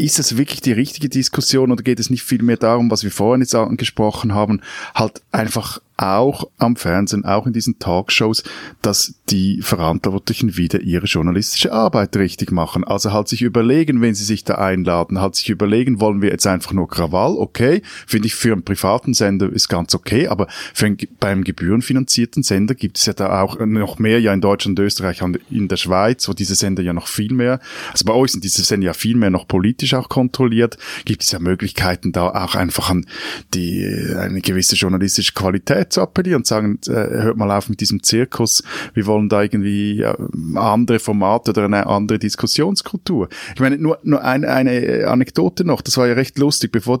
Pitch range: 95-125 Hz